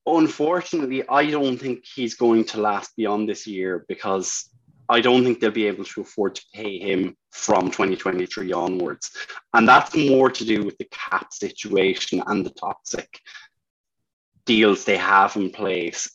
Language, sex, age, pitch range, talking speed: English, male, 20-39, 110-140 Hz, 160 wpm